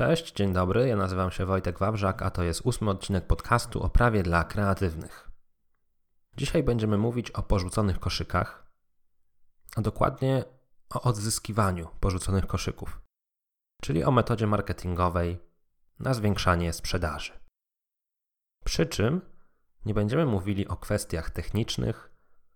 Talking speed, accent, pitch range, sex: 120 wpm, native, 90-110 Hz, male